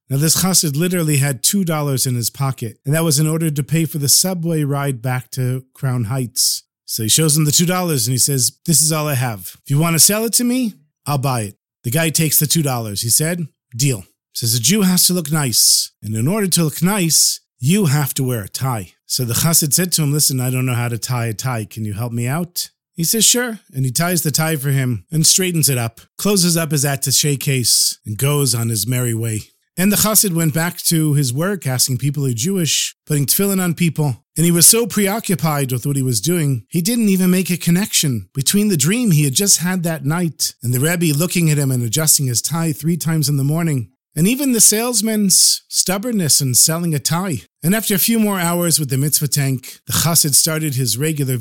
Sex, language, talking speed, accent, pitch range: male, English, 235 wpm, American, 130-170 Hz